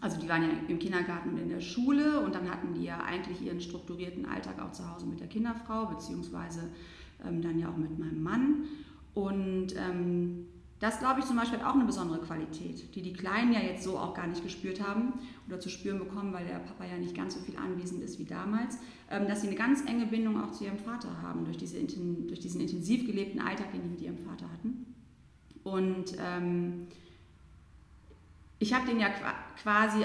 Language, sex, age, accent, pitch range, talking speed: German, female, 30-49, German, 175-240 Hz, 210 wpm